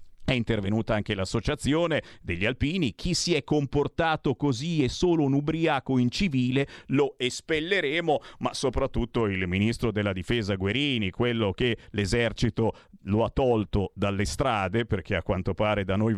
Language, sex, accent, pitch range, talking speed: Italian, male, native, 110-160 Hz, 145 wpm